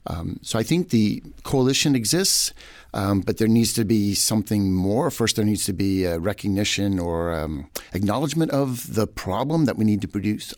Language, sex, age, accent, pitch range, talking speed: English, male, 50-69, American, 90-115 Hz, 185 wpm